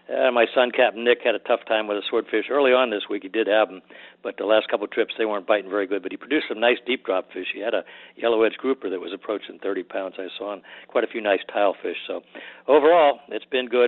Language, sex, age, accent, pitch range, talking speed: English, male, 60-79, American, 110-125 Hz, 275 wpm